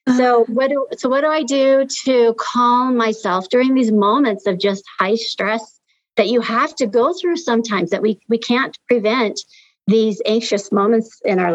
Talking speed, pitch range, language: 170 wpm, 200-255 Hz, English